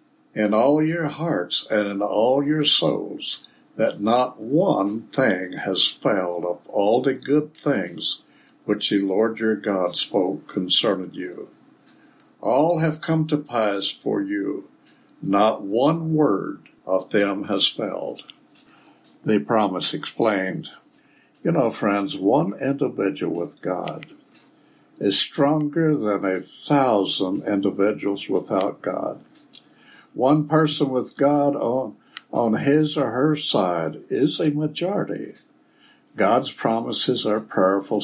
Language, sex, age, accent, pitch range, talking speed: English, male, 60-79, American, 100-150 Hz, 120 wpm